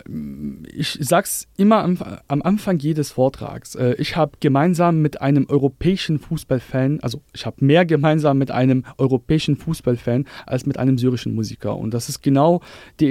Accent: German